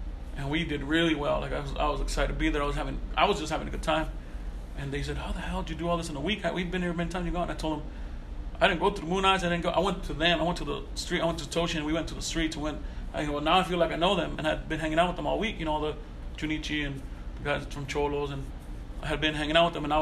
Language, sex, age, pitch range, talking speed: English, male, 30-49, 135-165 Hz, 350 wpm